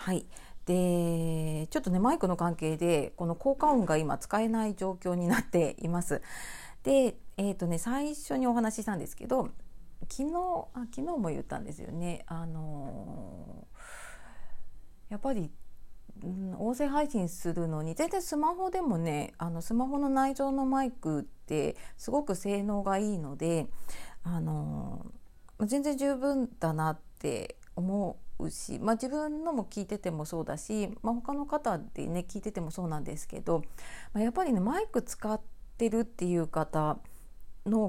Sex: female